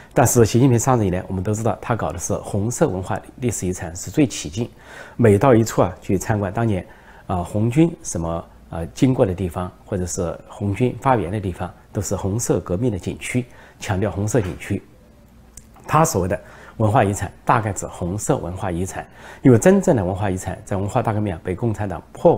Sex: male